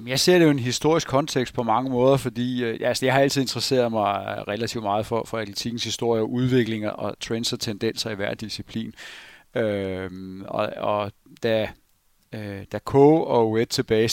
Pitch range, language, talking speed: 105-120 Hz, Danish, 185 wpm